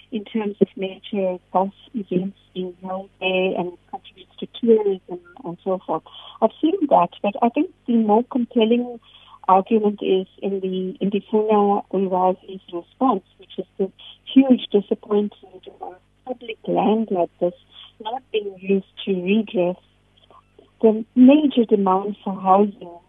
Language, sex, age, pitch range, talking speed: English, female, 50-69, 190-245 Hz, 135 wpm